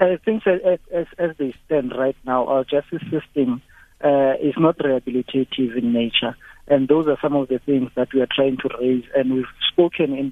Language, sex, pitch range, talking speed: English, male, 135-160 Hz, 210 wpm